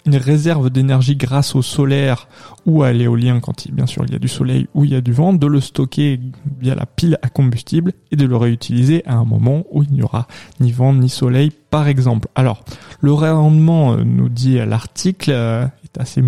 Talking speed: 215 wpm